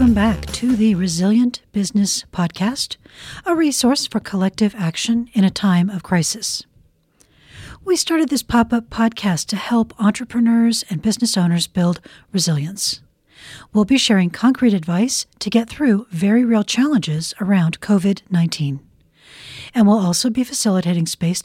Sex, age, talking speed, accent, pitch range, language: female, 40-59, 135 wpm, American, 180-235 Hz, English